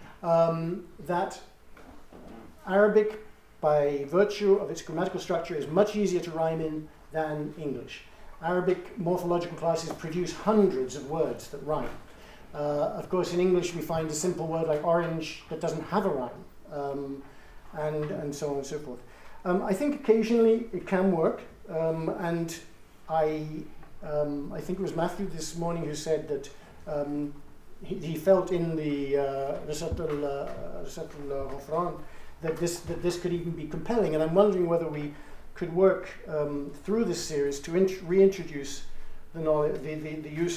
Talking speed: 160 wpm